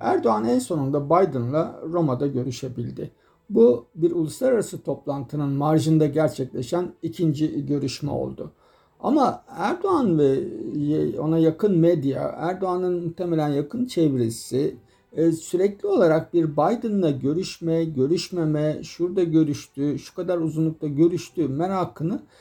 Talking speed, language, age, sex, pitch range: 100 wpm, Turkish, 50-69, male, 145-190 Hz